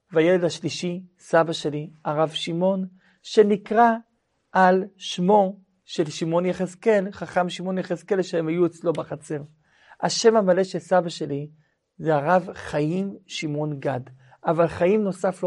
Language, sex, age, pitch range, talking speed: Hebrew, male, 50-69, 150-185 Hz, 130 wpm